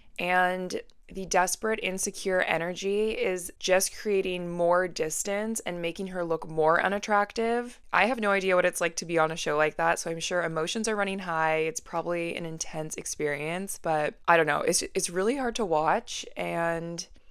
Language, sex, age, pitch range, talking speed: English, female, 20-39, 160-190 Hz, 185 wpm